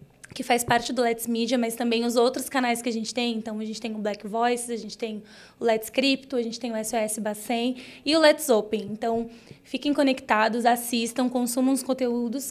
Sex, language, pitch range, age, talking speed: female, Portuguese, 225-260 Hz, 20-39, 215 wpm